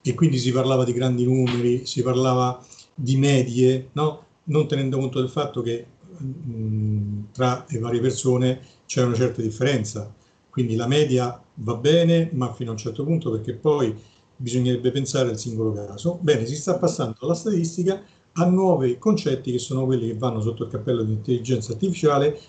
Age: 40-59